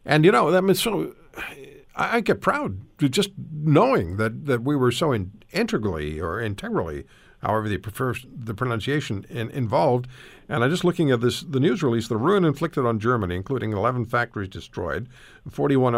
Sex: male